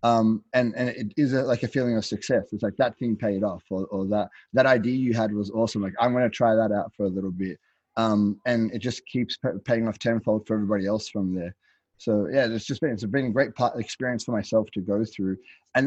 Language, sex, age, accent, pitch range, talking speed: English, male, 20-39, Australian, 105-125 Hz, 250 wpm